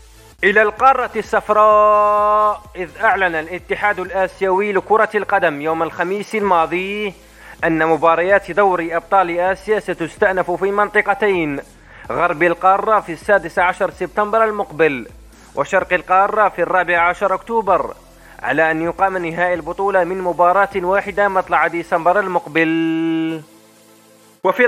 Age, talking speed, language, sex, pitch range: 30-49, 110 wpm, Arabic, male, 170-210 Hz